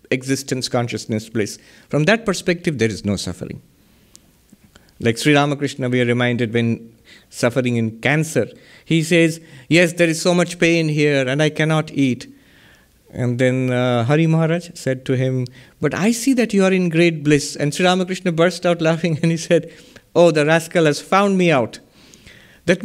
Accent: Indian